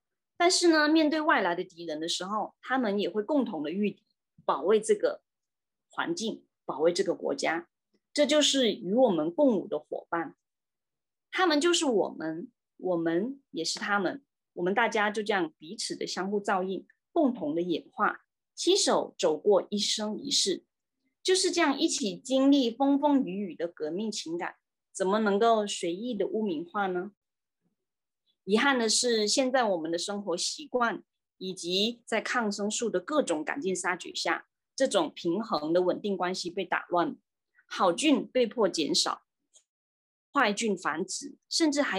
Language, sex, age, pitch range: Chinese, female, 20-39, 190-280 Hz